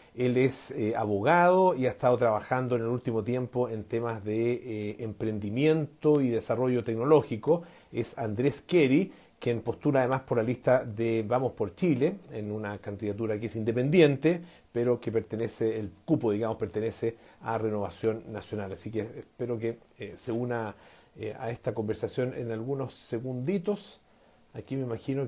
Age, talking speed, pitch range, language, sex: 40-59, 155 wpm, 110-135 Hz, Spanish, male